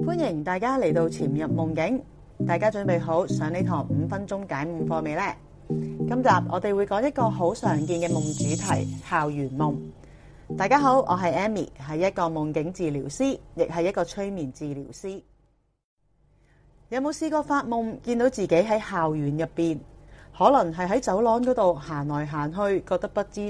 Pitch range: 155-210 Hz